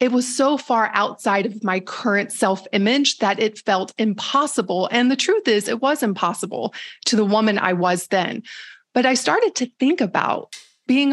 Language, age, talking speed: English, 30-49, 180 wpm